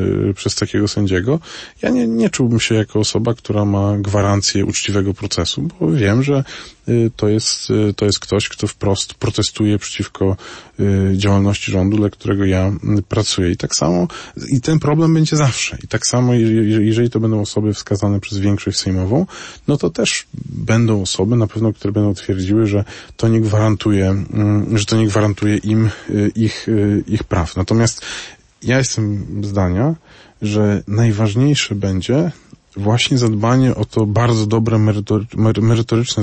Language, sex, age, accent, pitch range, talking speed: Polish, male, 20-39, native, 100-120 Hz, 145 wpm